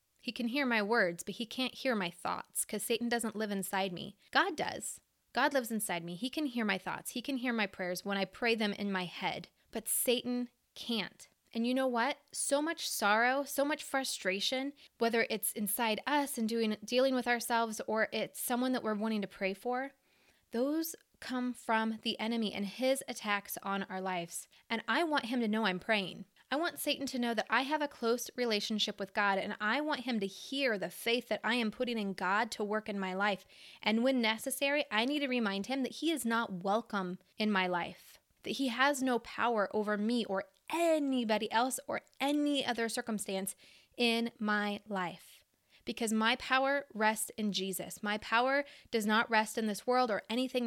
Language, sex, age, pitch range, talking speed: English, female, 20-39, 205-255 Hz, 205 wpm